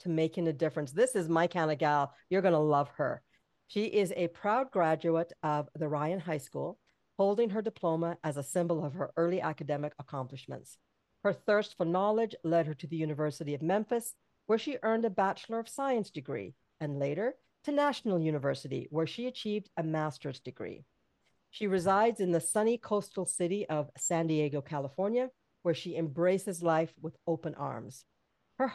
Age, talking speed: 50-69, 175 wpm